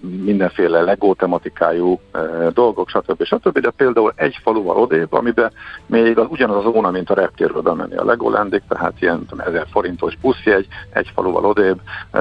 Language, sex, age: Hungarian, male, 50-69